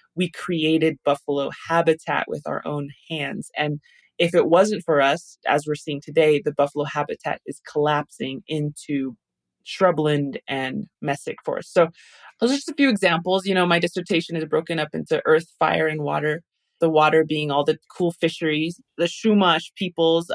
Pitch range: 150-185 Hz